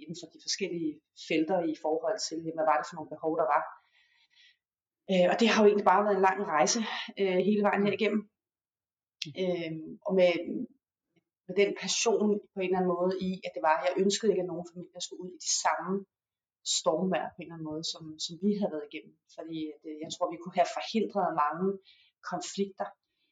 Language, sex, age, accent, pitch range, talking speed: Danish, female, 30-49, native, 160-195 Hz, 195 wpm